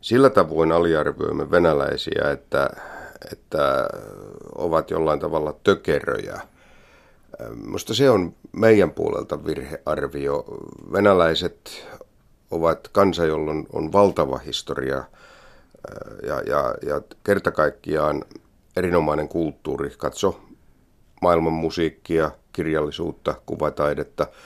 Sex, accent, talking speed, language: male, native, 85 wpm, Finnish